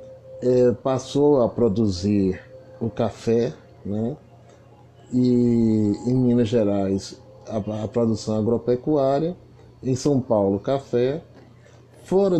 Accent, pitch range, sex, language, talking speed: Brazilian, 110-130 Hz, male, Portuguese, 90 wpm